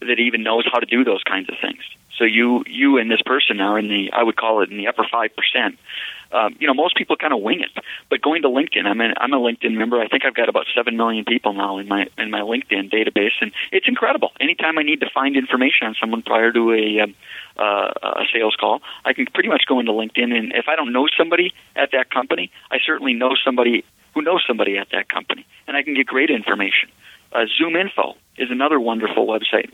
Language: English